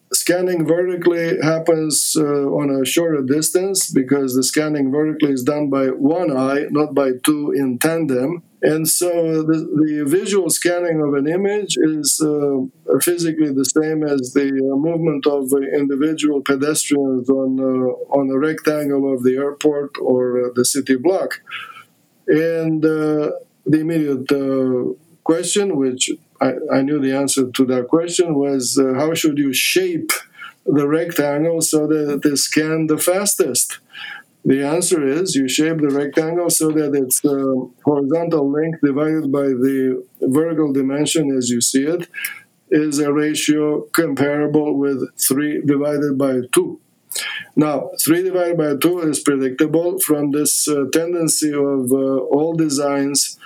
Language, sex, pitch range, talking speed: English, male, 135-160 Hz, 145 wpm